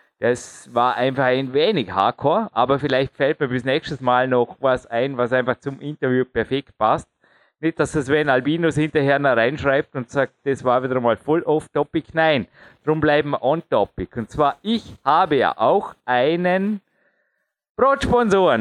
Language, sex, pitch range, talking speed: German, male, 125-160 Hz, 165 wpm